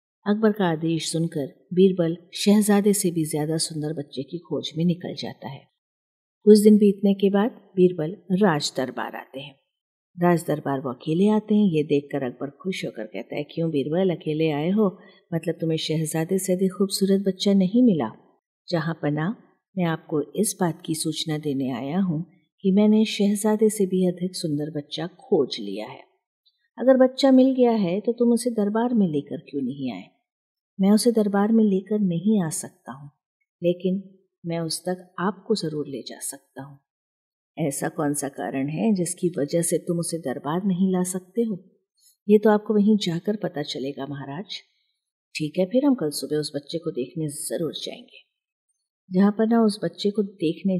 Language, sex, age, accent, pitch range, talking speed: Hindi, female, 50-69, native, 150-205 Hz, 175 wpm